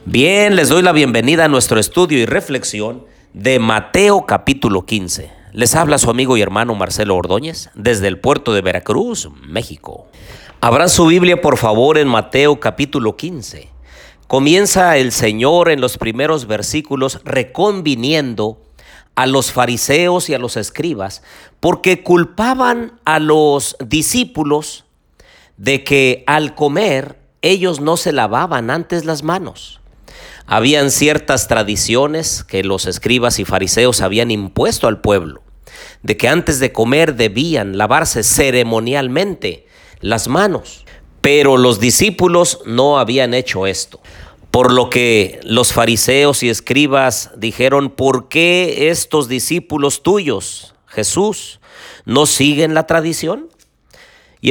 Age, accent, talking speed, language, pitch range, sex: 50-69, Mexican, 130 wpm, Spanish, 115-155 Hz, male